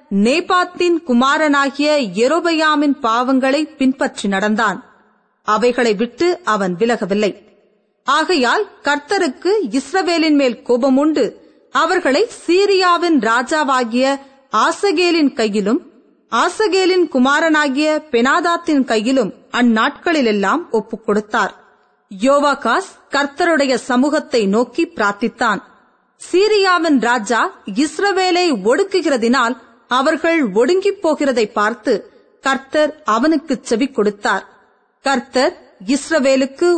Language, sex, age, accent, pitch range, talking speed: Tamil, female, 30-49, native, 235-325 Hz, 75 wpm